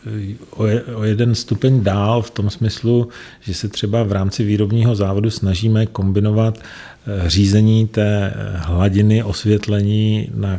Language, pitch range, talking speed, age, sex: Czech, 100-110 Hz, 120 wpm, 40-59, male